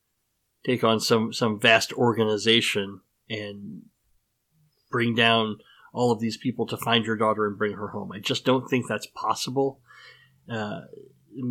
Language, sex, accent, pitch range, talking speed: English, male, American, 115-140 Hz, 145 wpm